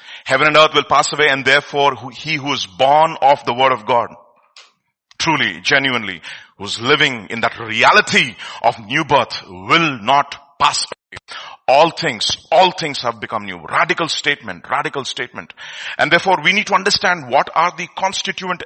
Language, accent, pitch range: English, Indian, 150-205 Hz